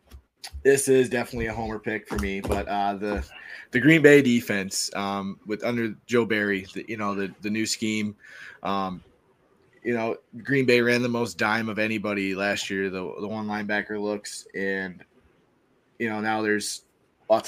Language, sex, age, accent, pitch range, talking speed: English, male, 20-39, American, 100-120 Hz, 175 wpm